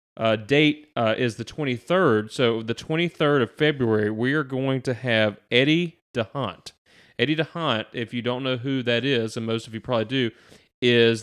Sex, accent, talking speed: male, American, 180 wpm